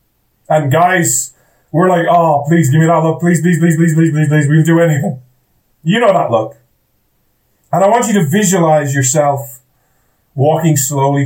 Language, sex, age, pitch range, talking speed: English, male, 30-49, 130-170 Hz, 180 wpm